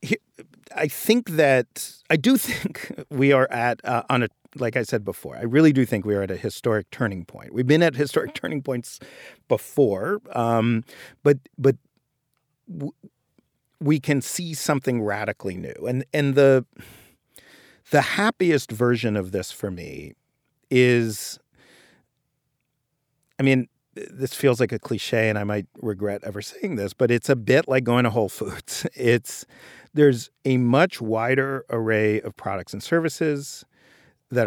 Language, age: English, 40-59